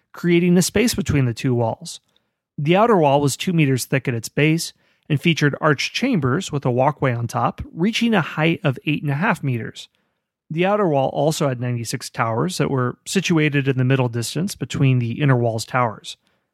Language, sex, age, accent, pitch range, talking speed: English, male, 30-49, American, 125-165 Hz, 195 wpm